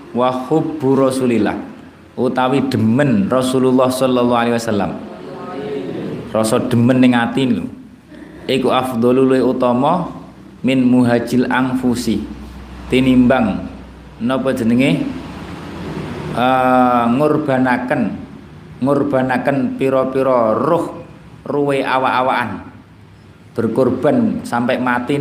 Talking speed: 75 wpm